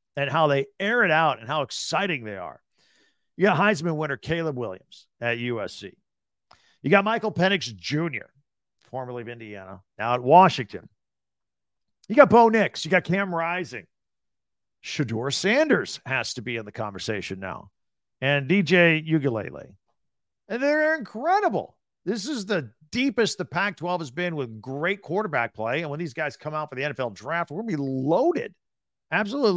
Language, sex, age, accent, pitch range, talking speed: English, male, 50-69, American, 135-190 Hz, 165 wpm